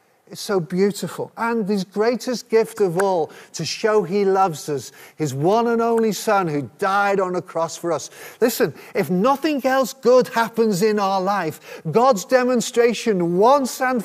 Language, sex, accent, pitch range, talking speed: English, male, British, 165-220 Hz, 165 wpm